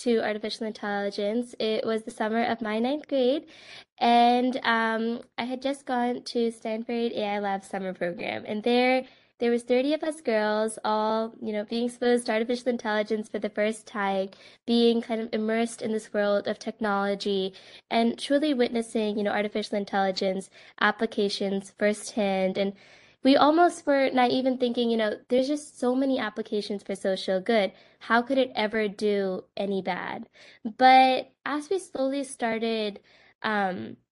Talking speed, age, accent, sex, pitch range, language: 160 wpm, 10-29, American, female, 210-255 Hz, English